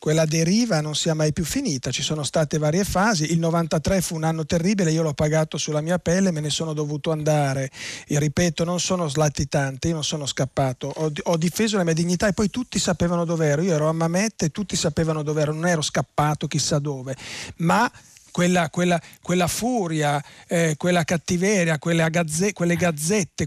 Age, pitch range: 40-59, 160-185 Hz